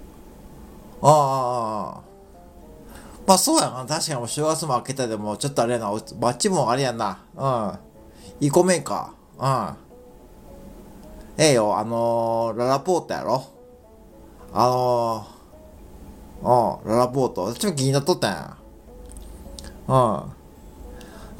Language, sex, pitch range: Japanese, male, 95-155 Hz